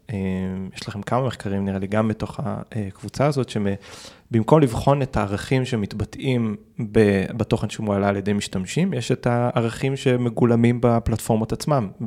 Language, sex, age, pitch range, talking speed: English, male, 30-49, 105-120 Hz, 130 wpm